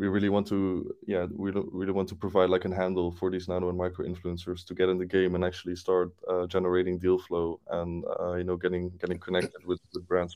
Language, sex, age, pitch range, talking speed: English, male, 20-39, 90-95 Hz, 250 wpm